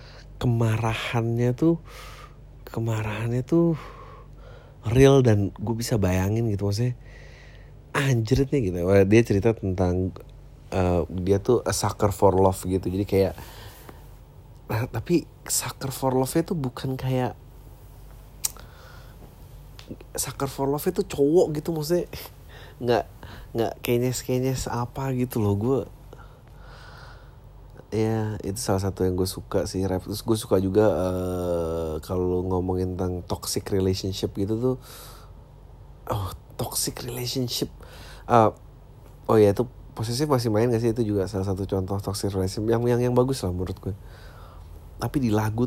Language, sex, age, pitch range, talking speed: Indonesian, male, 30-49, 95-125 Hz, 130 wpm